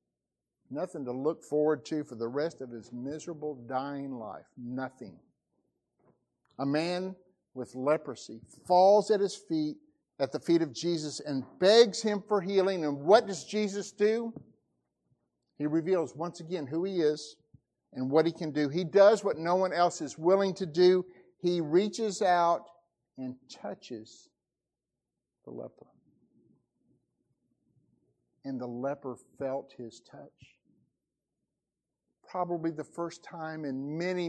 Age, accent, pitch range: 50-69, American, 135-195 Hz